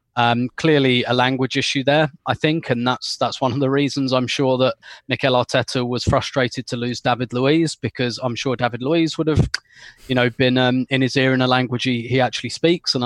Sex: male